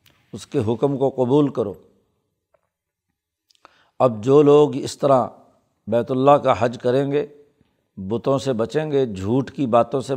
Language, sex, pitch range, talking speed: Urdu, male, 120-135 Hz, 150 wpm